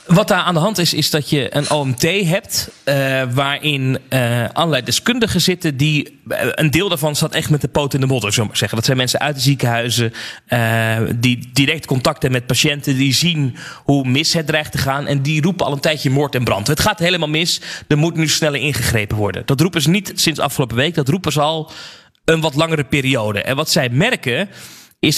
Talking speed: 225 wpm